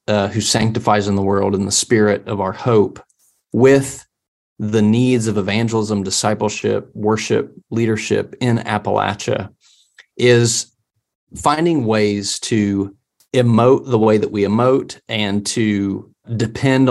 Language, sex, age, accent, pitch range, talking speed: English, male, 30-49, American, 105-130 Hz, 125 wpm